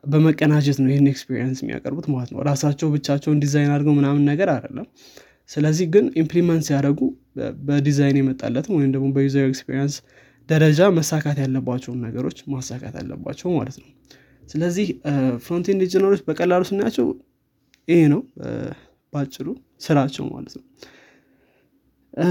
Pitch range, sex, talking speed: 135-155 Hz, male, 75 wpm